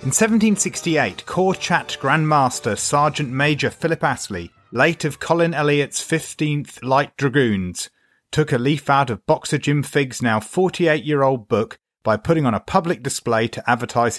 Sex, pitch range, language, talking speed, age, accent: male, 110-150 Hz, English, 150 wpm, 30-49, British